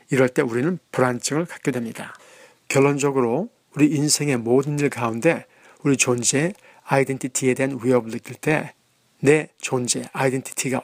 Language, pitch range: Korean, 130-155 Hz